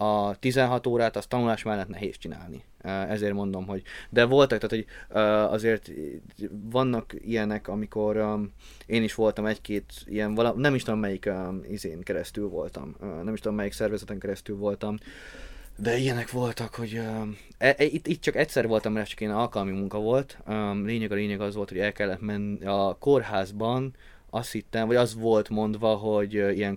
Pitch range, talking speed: 100-115 Hz, 160 wpm